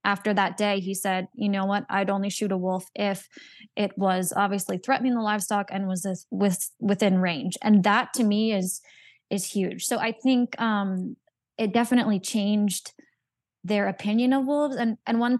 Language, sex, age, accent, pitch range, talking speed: English, female, 20-39, American, 190-220 Hz, 185 wpm